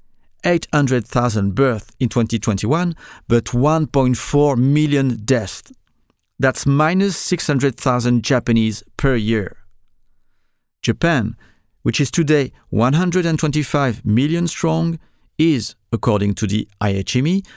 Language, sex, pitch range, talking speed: English, male, 105-145 Hz, 90 wpm